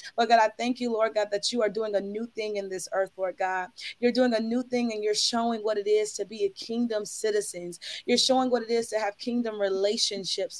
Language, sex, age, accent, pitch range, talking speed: English, female, 20-39, American, 205-235 Hz, 250 wpm